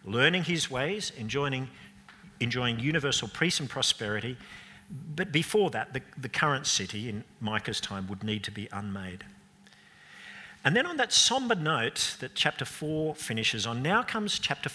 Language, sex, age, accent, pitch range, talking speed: English, male, 50-69, Australian, 110-155 Hz, 155 wpm